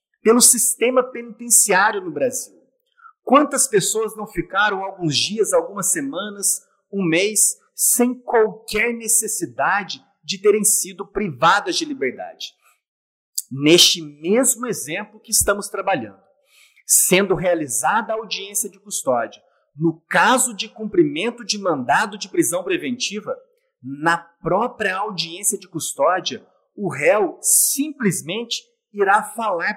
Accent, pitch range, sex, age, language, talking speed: Brazilian, 190-245 Hz, male, 40-59, Portuguese, 110 wpm